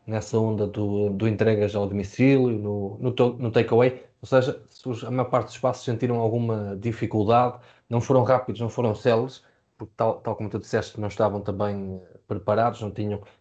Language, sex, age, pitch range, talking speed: Portuguese, male, 20-39, 105-130 Hz, 175 wpm